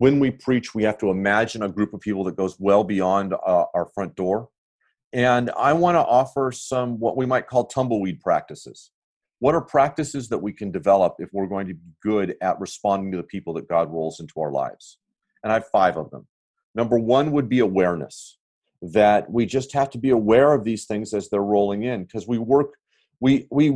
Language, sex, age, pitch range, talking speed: English, male, 40-59, 100-130 Hz, 205 wpm